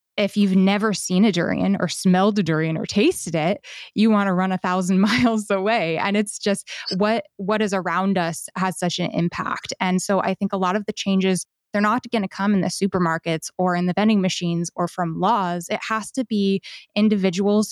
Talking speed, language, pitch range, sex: 215 wpm, English, 180-210 Hz, female